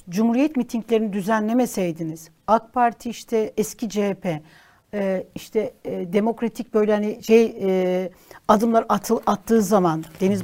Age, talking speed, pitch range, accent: 60-79, 100 wpm, 200-265 Hz, native